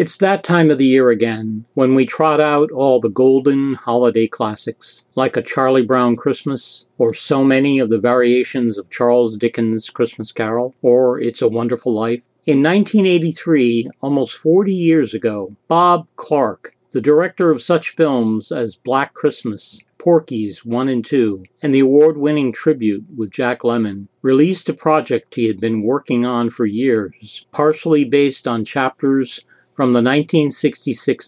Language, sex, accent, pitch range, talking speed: English, male, American, 115-150 Hz, 155 wpm